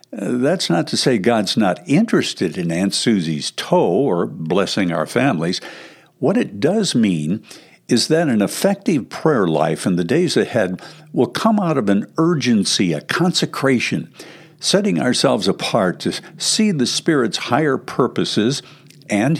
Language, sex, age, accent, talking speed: English, male, 60-79, American, 145 wpm